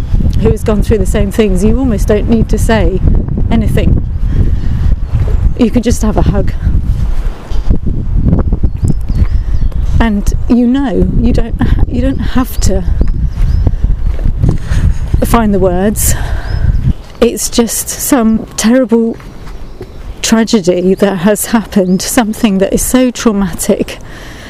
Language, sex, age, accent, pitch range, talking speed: English, female, 40-59, British, 195-245 Hz, 110 wpm